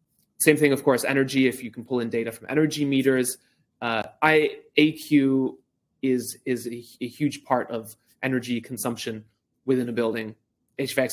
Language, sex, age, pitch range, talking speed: English, male, 20-39, 120-140 Hz, 155 wpm